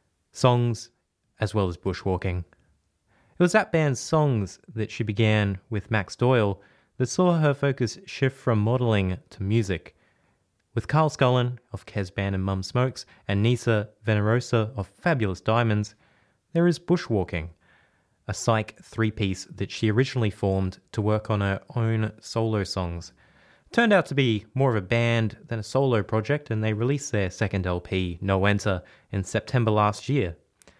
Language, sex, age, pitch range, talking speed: English, male, 20-39, 100-130 Hz, 160 wpm